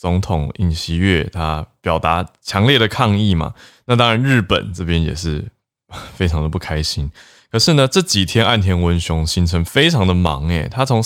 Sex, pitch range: male, 85-115 Hz